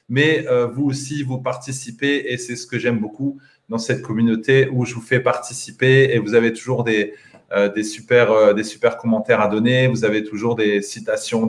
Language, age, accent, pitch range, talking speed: French, 30-49, French, 120-145 Hz, 185 wpm